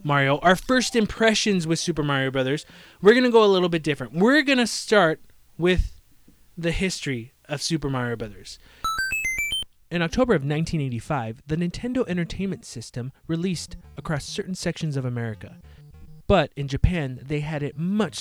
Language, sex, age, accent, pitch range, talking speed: English, male, 20-39, American, 120-170 Hz, 160 wpm